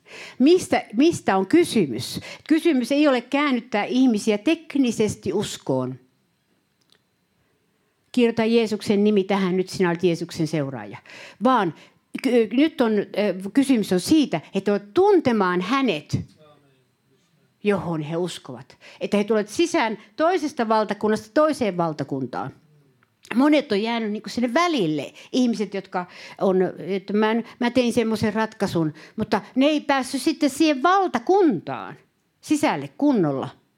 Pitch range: 185-275 Hz